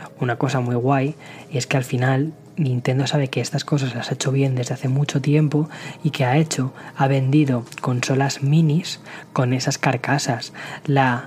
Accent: Spanish